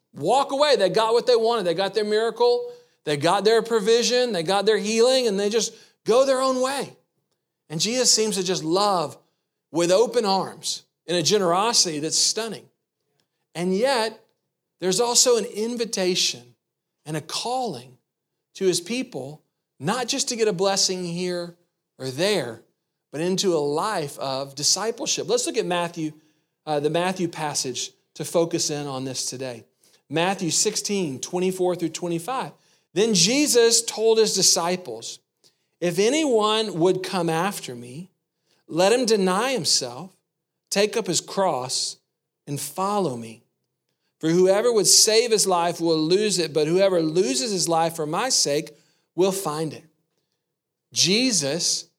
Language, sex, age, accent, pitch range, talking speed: English, male, 40-59, American, 160-220 Hz, 150 wpm